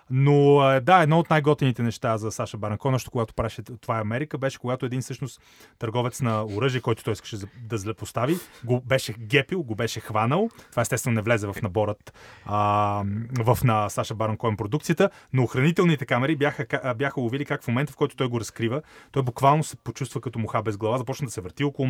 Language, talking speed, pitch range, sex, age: Bulgarian, 195 wpm, 115-155 Hz, male, 30-49